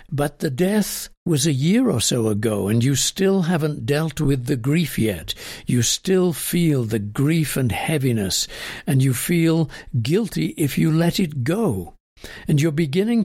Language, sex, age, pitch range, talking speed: English, male, 60-79, 120-165 Hz, 170 wpm